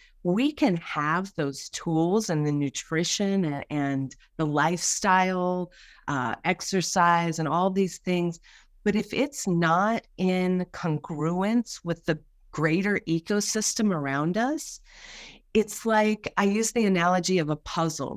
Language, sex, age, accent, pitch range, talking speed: English, female, 40-59, American, 160-200 Hz, 125 wpm